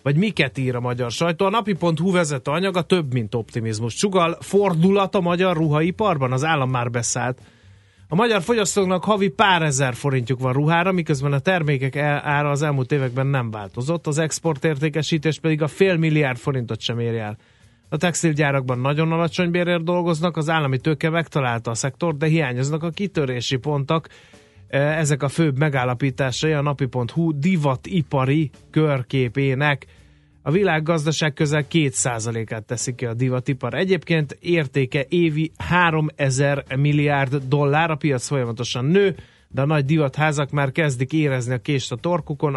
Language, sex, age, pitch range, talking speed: Hungarian, male, 30-49, 125-160 Hz, 150 wpm